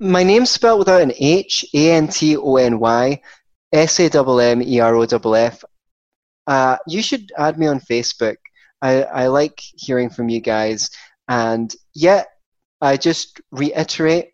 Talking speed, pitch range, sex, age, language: 105 wpm, 115-145 Hz, male, 20-39, English